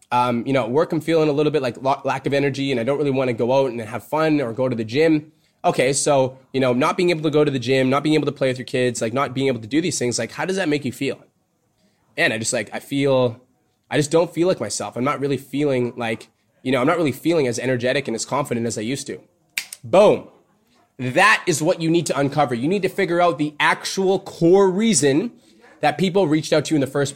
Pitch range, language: 130-165 Hz, English